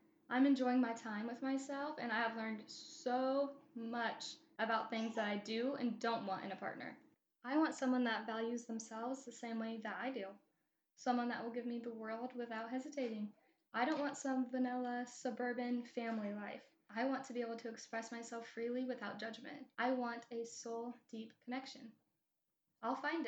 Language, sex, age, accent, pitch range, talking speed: English, female, 10-29, American, 225-255 Hz, 180 wpm